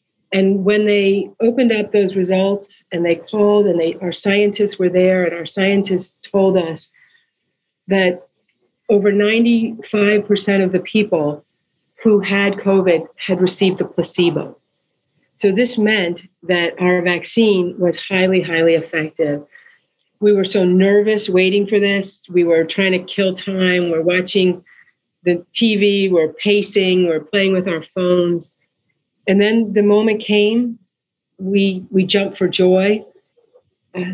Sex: female